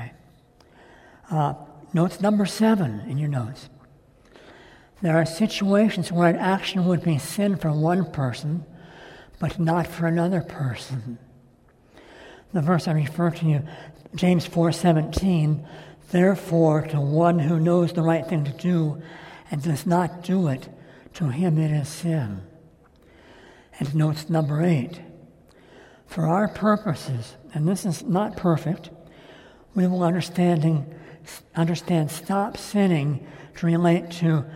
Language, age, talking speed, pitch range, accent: English, 60-79, 130 wpm, 150-180 Hz, American